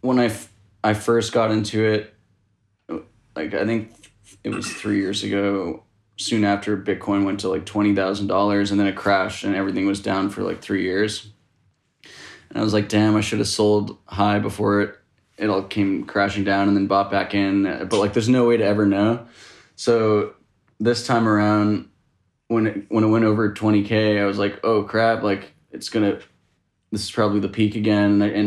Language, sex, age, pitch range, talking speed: English, male, 20-39, 100-110 Hz, 190 wpm